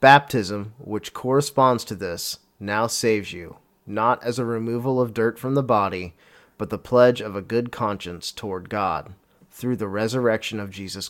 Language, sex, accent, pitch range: English, male, American, 105-130 Hz